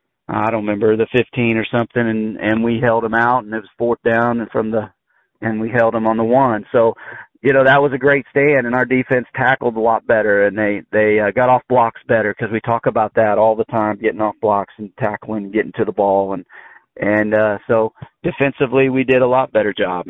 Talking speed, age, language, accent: 240 wpm, 40-59, English, American